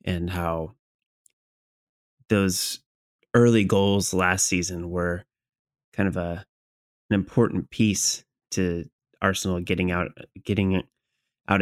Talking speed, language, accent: 105 wpm, English, American